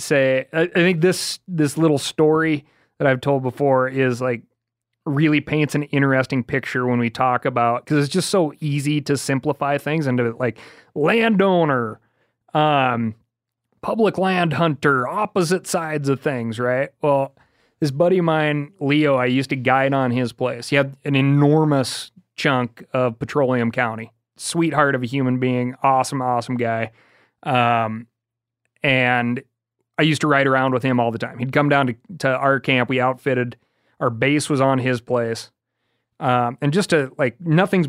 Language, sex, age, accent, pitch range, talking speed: English, male, 30-49, American, 125-155 Hz, 165 wpm